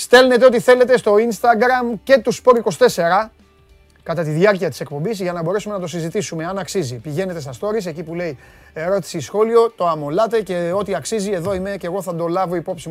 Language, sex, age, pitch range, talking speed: Greek, male, 30-49, 135-190 Hz, 195 wpm